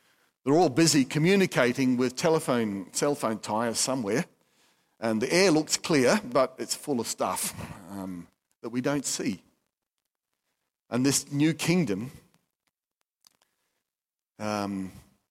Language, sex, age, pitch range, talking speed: English, male, 50-69, 115-145 Hz, 120 wpm